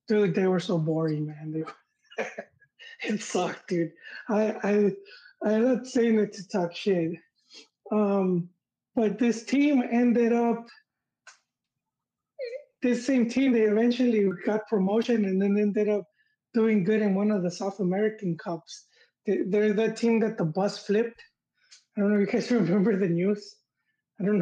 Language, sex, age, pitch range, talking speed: English, male, 20-39, 195-235 Hz, 155 wpm